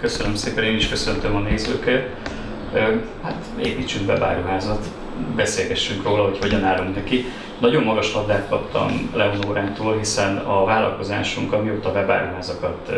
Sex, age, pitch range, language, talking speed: male, 30-49, 95-115 Hz, Hungarian, 125 wpm